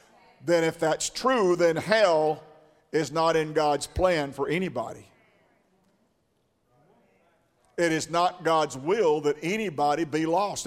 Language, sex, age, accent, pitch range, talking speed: English, male, 50-69, American, 155-205 Hz, 125 wpm